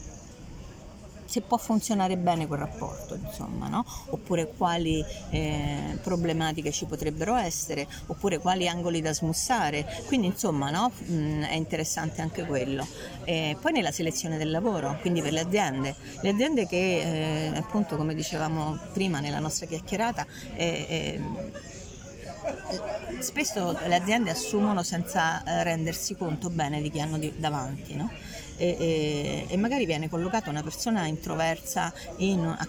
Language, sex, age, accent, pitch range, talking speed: Italian, female, 40-59, native, 155-205 Hz, 130 wpm